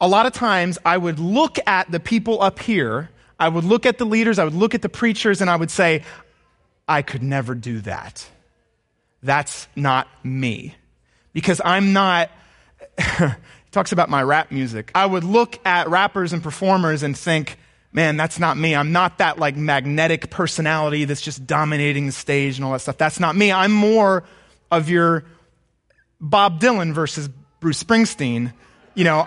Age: 30-49